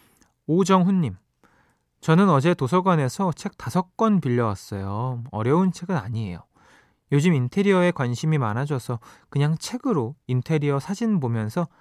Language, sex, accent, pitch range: Korean, male, native, 130-205 Hz